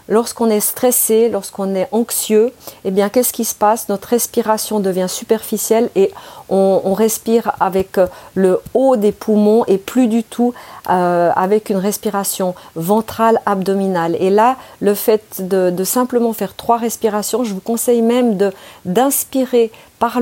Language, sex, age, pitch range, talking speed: French, female, 40-59, 200-250 Hz, 150 wpm